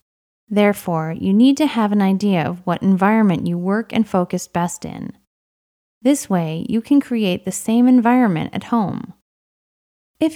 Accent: American